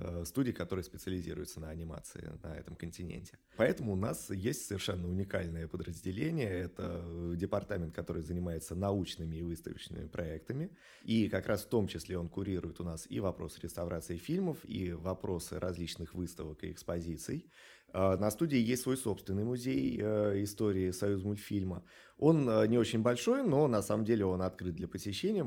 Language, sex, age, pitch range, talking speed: Russian, male, 30-49, 85-105 Hz, 150 wpm